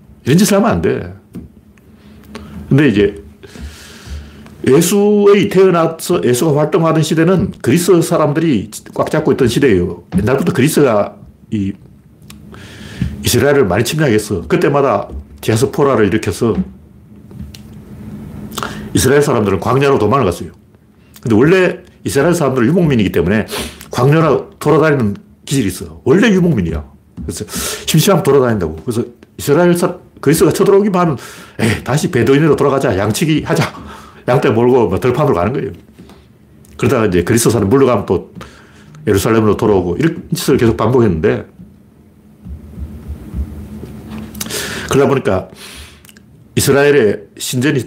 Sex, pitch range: male, 100-155 Hz